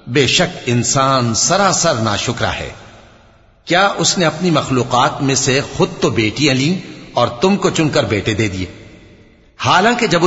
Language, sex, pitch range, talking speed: Arabic, male, 115-170 Hz, 150 wpm